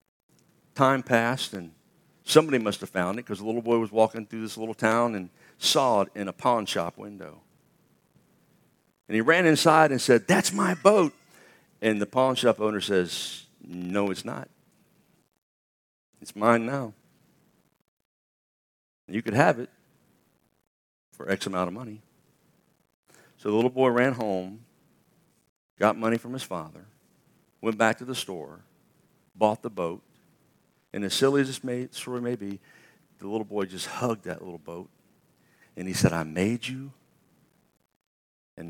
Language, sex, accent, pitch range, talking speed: English, male, American, 100-130 Hz, 155 wpm